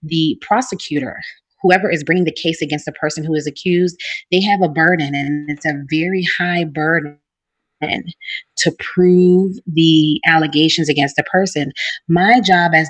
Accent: American